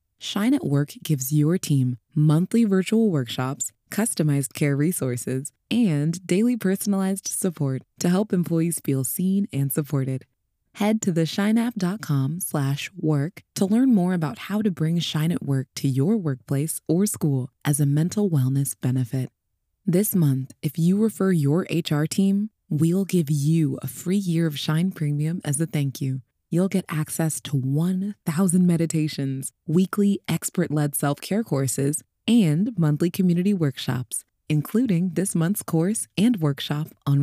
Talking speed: 145 wpm